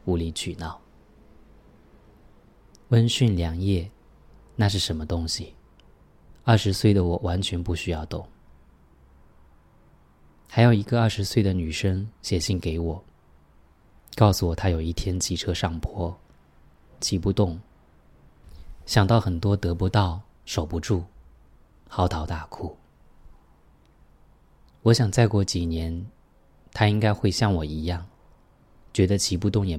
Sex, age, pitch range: male, 20-39, 80-100 Hz